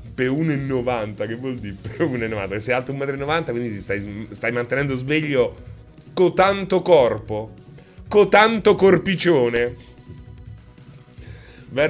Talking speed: 115 wpm